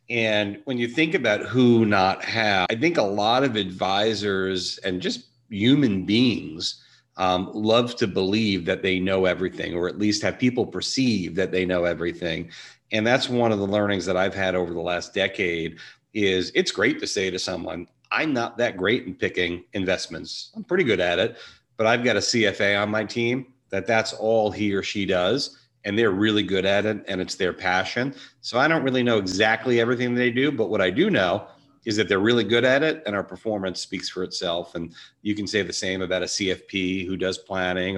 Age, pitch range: 40-59, 95-120 Hz